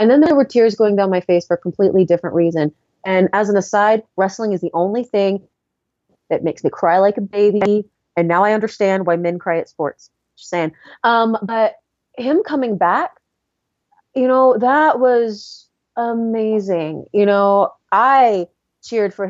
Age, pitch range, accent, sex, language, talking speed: 30-49, 185-240 Hz, American, female, English, 175 wpm